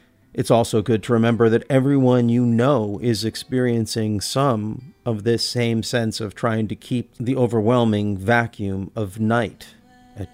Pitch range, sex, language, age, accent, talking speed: 105-130 Hz, male, English, 40-59, American, 150 wpm